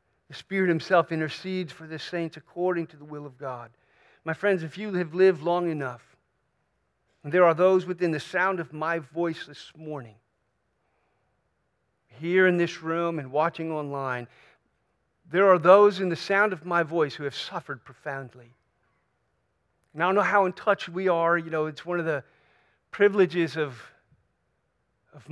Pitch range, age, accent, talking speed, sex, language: 140-175 Hz, 50-69, American, 170 wpm, male, English